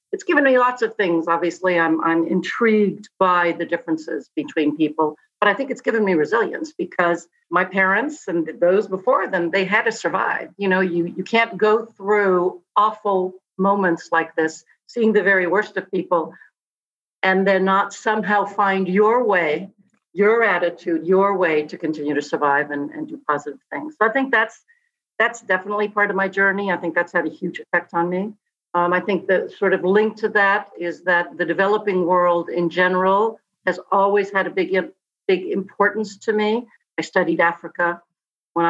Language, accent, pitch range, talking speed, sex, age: English, American, 175-210 Hz, 185 wpm, female, 50-69